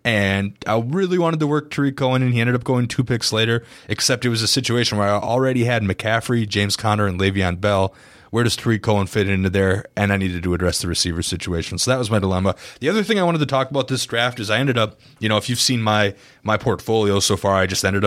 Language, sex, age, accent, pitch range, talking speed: English, male, 30-49, American, 95-125 Hz, 260 wpm